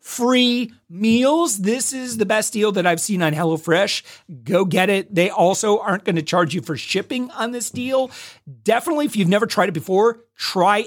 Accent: American